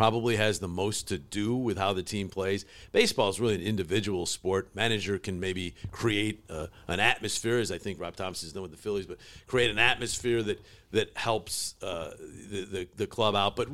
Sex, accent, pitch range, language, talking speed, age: male, American, 95-120 Hz, English, 210 wpm, 50-69